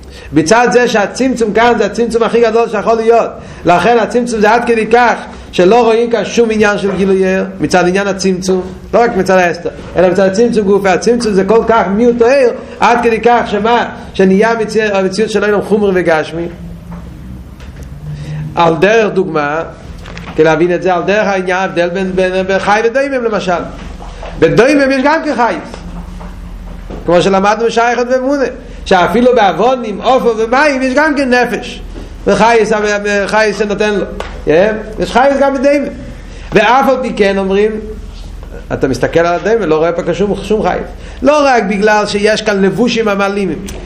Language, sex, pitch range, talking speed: Hebrew, male, 185-235 Hz, 160 wpm